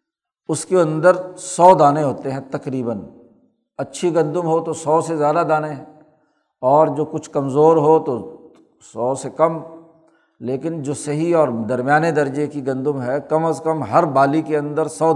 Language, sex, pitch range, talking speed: Urdu, male, 135-160 Hz, 165 wpm